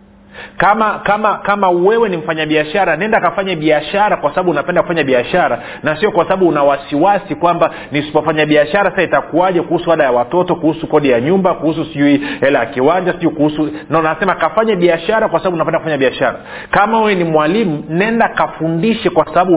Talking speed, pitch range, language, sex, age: 170 wpm, 150-190 Hz, Swahili, male, 40-59